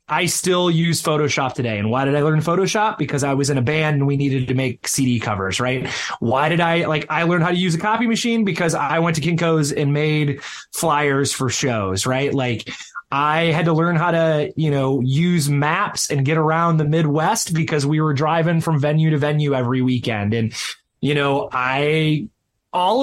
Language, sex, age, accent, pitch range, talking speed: English, male, 20-39, American, 135-165 Hz, 205 wpm